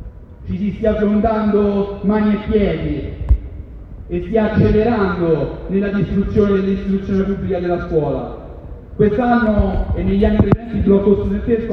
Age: 40-59